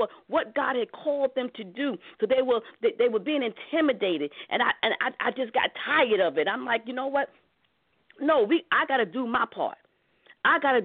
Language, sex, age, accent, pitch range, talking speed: English, female, 40-59, American, 225-300 Hz, 210 wpm